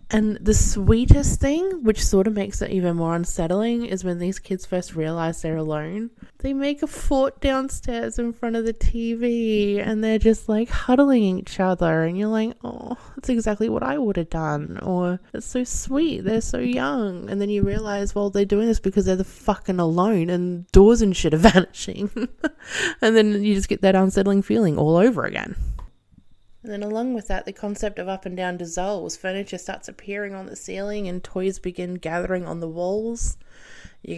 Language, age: English, 20-39